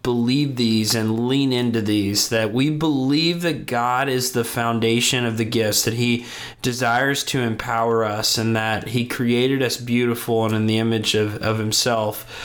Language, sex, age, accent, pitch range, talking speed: English, male, 20-39, American, 110-130 Hz, 175 wpm